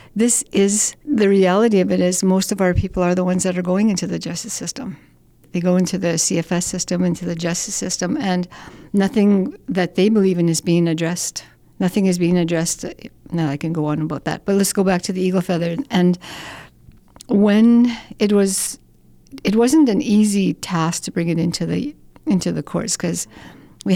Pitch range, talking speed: 170-195 Hz, 195 wpm